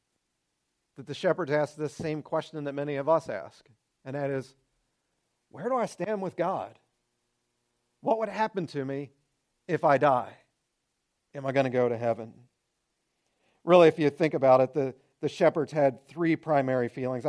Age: 40-59